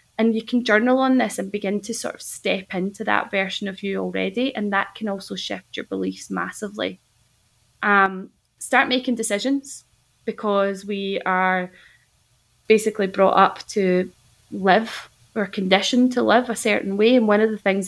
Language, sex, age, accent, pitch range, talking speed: English, female, 20-39, British, 190-225 Hz, 170 wpm